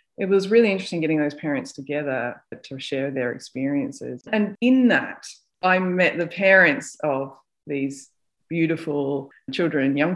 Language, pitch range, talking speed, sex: English, 150-205 Hz, 140 wpm, female